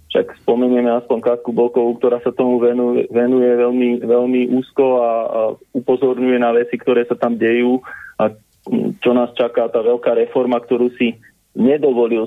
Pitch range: 115-130 Hz